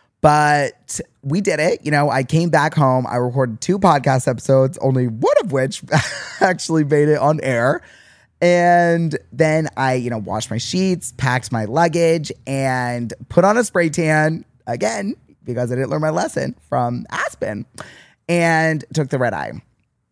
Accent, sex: American, male